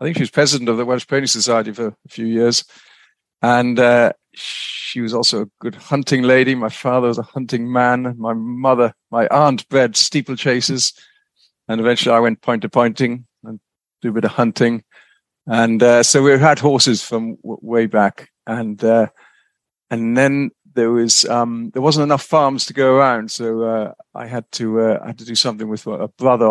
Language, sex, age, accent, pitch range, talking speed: English, male, 50-69, British, 115-135 Hz, 195 wpm